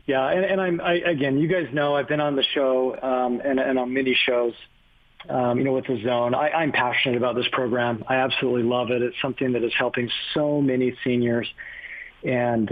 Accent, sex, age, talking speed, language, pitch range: American, male, 40-59, 210 wpm, English, 120-140 Hz